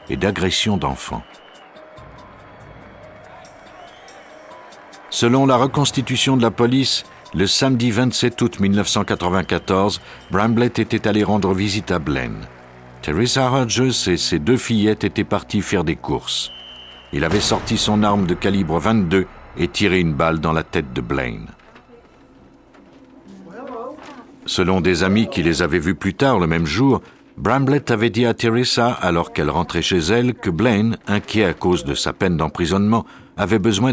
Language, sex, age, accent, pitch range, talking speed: French, male, 60-79, French, 90-115 Hz, 145 wpm